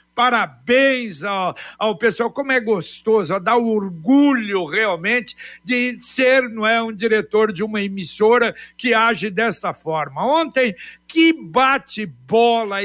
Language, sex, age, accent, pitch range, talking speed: Portuguese, male, 60-79, Brazilian, 215-260 Hz, 120 wpm